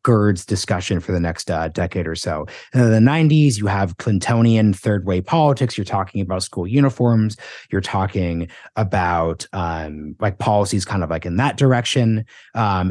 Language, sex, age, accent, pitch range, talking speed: English, male, 30-49, American, 95-125 Hz, 165 wpm